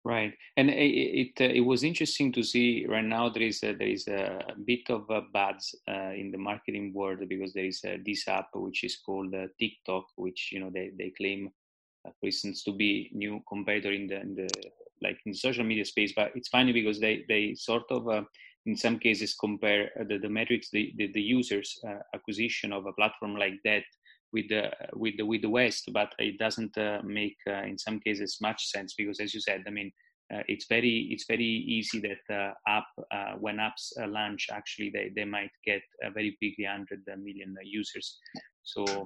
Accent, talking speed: Italian, 210 wpm